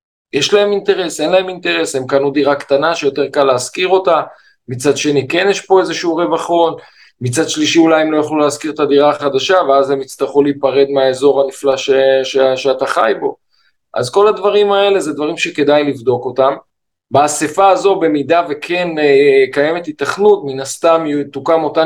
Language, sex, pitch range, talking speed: Hebrew, male, 135-195 Hz, 165 wpm